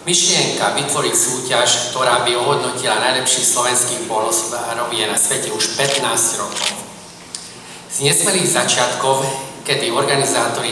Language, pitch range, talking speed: Slovak, 120-140 Hz, 110 wpm